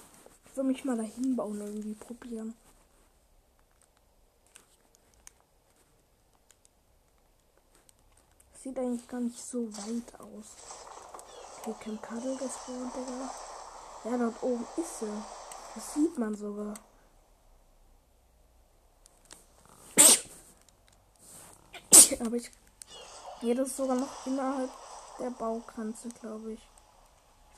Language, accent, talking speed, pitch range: German, German, 100 wpm, 210-240 Hz